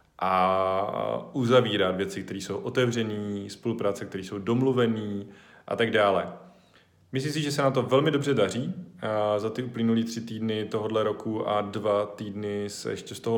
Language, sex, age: Czech, male, 20-39